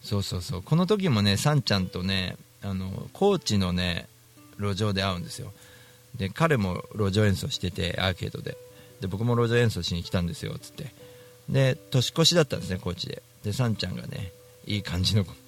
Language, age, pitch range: Japanese, 40-59, 100-130 Hz